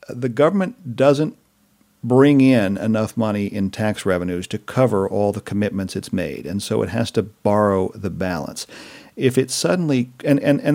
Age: 50-69